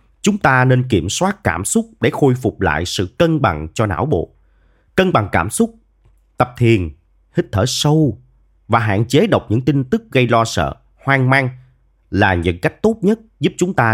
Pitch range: 90-140 Hz